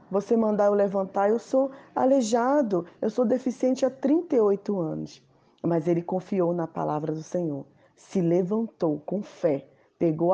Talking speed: 145 wpm